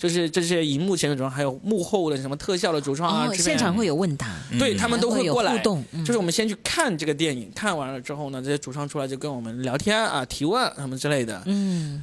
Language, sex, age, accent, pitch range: Chinese, male, 20-39, native, 135-185 Hz